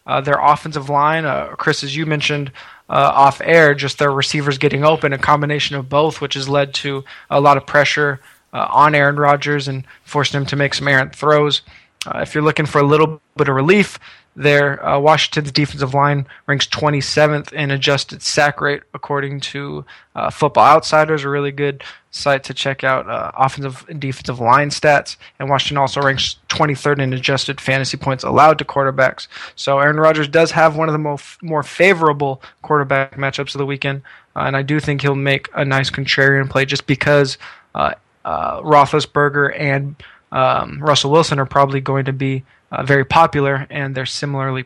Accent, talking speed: American, 185 wpm